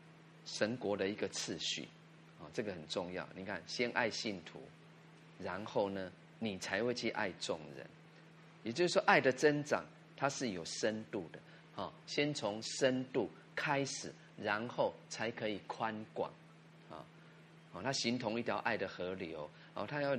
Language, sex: Chinese, male